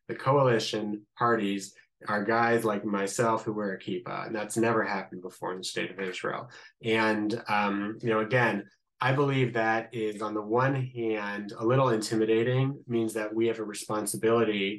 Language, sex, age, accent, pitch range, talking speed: English, male, 20-39, American, 105-115 Hz, 175 wpm